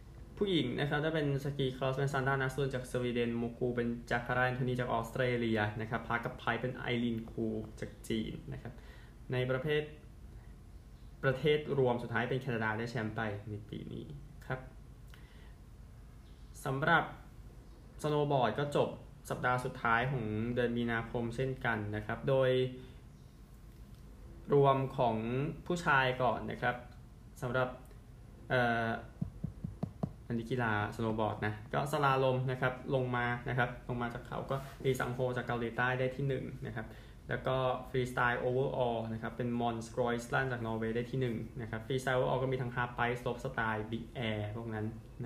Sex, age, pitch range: male, 20-39, 115-130 Hz